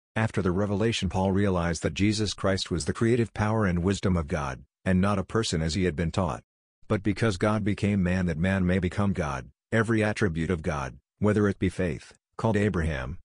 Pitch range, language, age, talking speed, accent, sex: 85-105 Hz, English, 50-69, 205 wpm, American, male